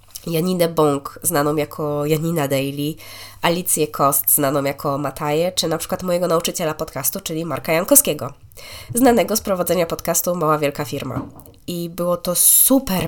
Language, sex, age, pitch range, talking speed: Polish, female, 20-39, 150-180 Hz, 140 wpm